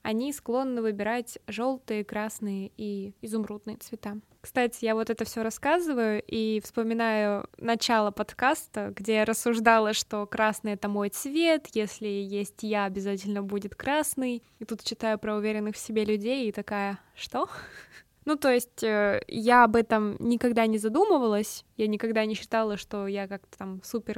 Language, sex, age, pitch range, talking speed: Russian, female, 20-39, 210-245 Hz, 155 wpm